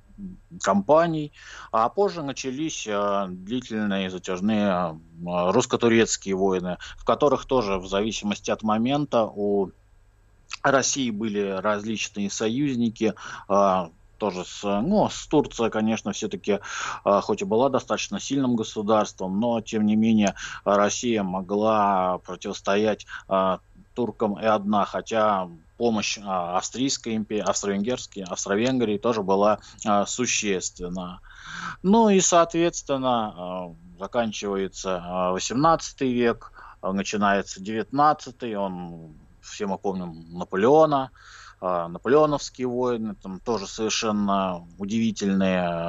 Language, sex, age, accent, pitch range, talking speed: Russian, male, 20-39, native, 95-120 Hz, 95 wpm